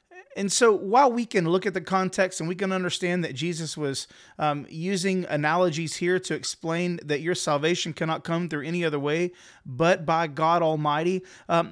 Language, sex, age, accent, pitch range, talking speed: English, male, 30-49, American, 150-190 Hz, 185 wpm